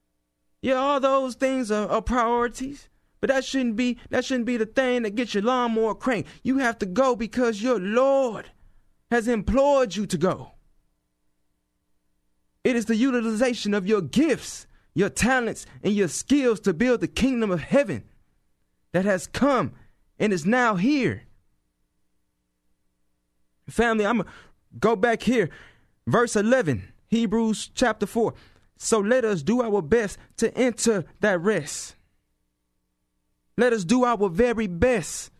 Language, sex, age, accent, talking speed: English, male, 20-39, American, 145 wpm